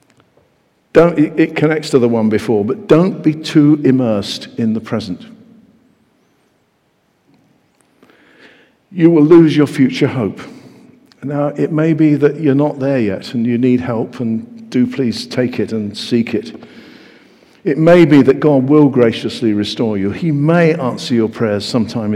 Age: 50-69